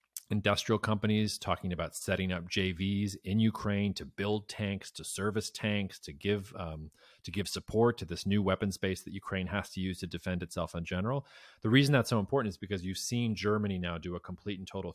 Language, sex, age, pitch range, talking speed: English, male, 30-49, 95-115 Hz, 210 wpm